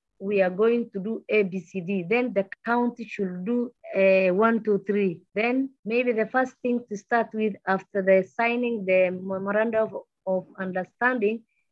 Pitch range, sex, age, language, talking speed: 190-230 Hz, female, 30-49, English, 155 wpm